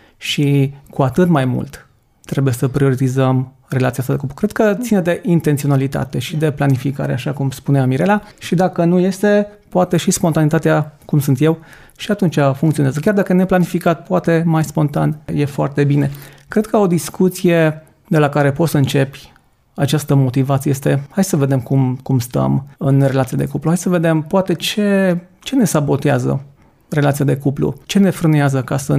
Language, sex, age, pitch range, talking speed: Romanian, male, 30-49, 140-170 Hz, 180 wpm